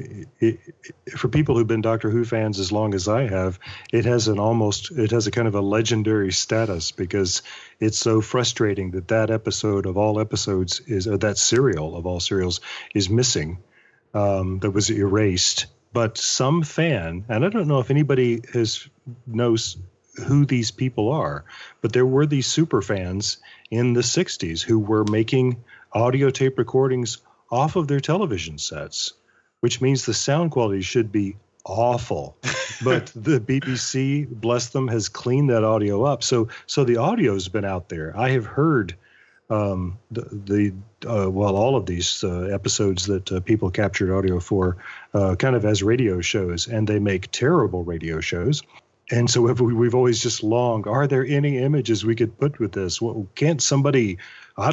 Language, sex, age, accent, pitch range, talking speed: English, male, 40-59, American, 100-130 Hz, 180 wpm